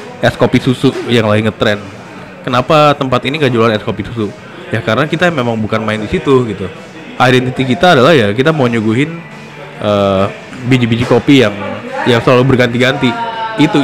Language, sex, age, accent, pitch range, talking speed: Indonesian, male, 20-39, native, 115-140 Hz, 165 wpm